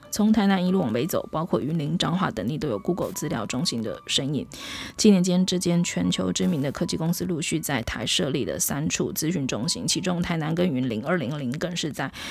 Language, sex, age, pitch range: Chinese, female, 20-39, 140-200 Hz